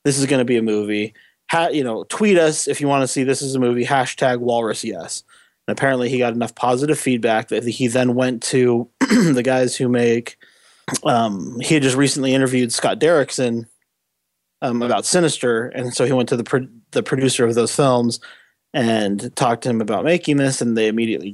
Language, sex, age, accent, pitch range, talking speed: English, male, 20-39, American, 115-130 Hz, 205 wpm